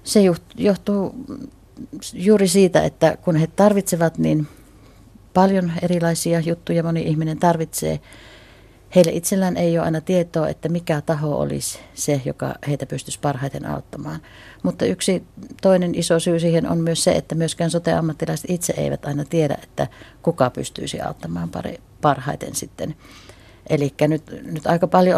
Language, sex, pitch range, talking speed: Finnish, female, 125-170 Hz, 140 wpm